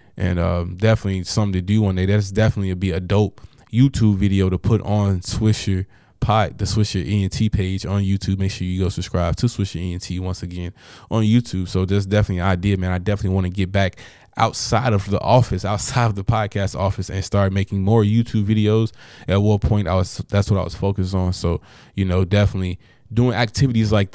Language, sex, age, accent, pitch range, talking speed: English, male, 20-39, American, 95-105 Hz, 210 wpm